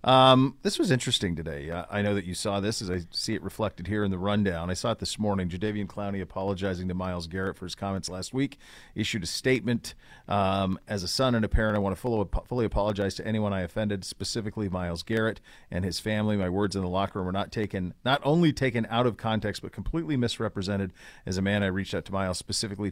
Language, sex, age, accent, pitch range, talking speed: English, male, 40-59, American, 95-115 Hz, 230 wpm